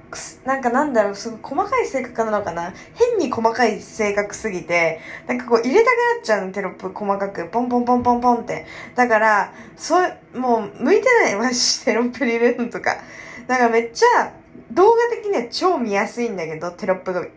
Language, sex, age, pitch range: Japanese, female, 20-39, 195-265 Hz